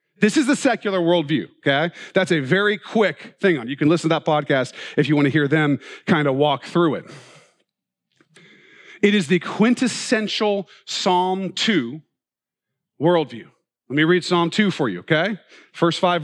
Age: 40-59